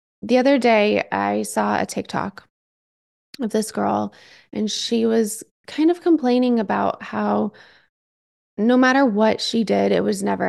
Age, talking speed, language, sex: 20-39, 150 wpm, English, female